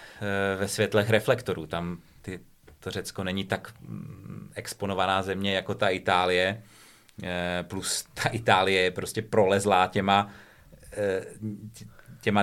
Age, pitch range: 30-49, 95-110 Hz